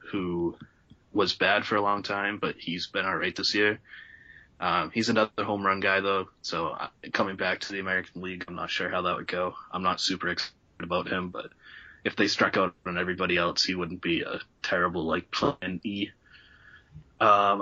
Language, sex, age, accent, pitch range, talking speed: English, male, 20-39, American, 90-105 Hz, 195 wpm